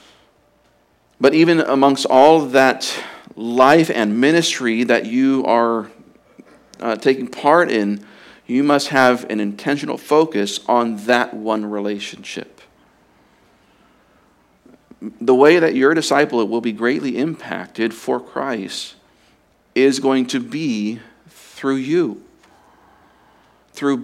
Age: 50-69